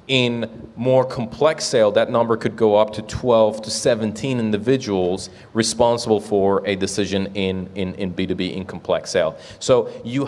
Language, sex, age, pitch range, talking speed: English, male, 30-49, 105-130 Hz, 165 wpm